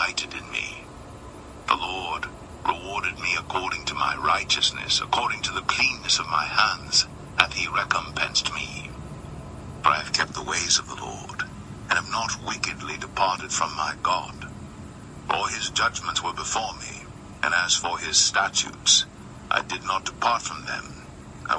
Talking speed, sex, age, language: 155 wpm, male, 60-79, English